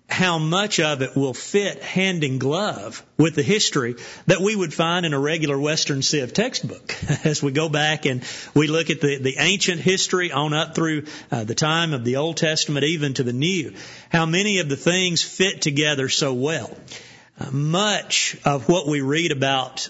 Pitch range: 140-170 Hz